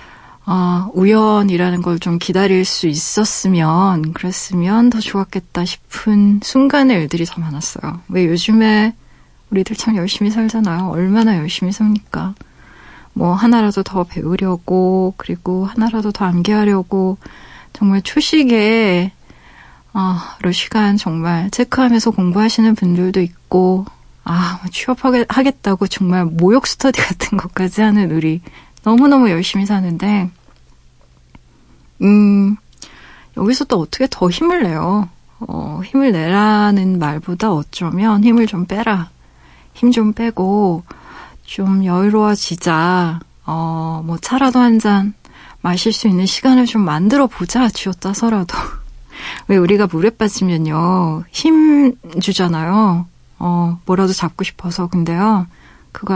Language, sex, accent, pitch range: Korean, female, native, 175-220 Hz